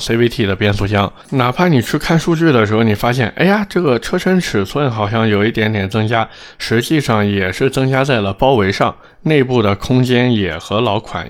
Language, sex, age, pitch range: Chinese, male, 20-39, 100-130 Hz